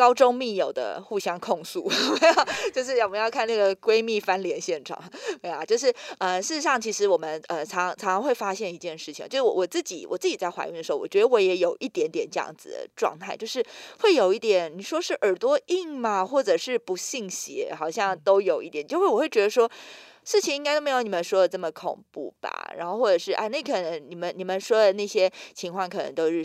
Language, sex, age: Chinese, female, 20-39